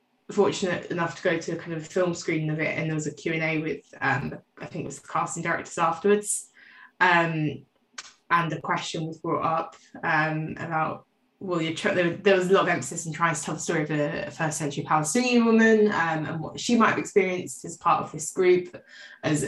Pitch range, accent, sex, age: 155-190 Hz, British, female, 20-39